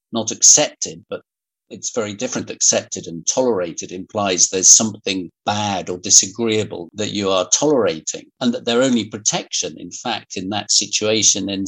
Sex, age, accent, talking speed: male, 50-69, British, 155 wpm